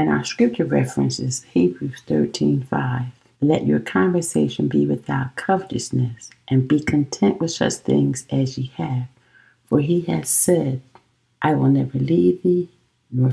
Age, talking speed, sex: 60-79, 140 wpm, female